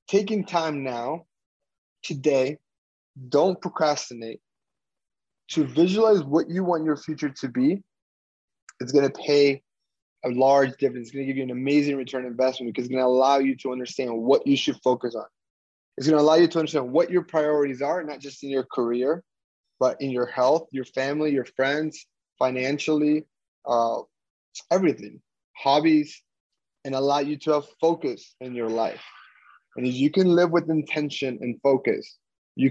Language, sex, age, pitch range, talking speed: English, male, 20-39, 130-165 Hz, 165 wpm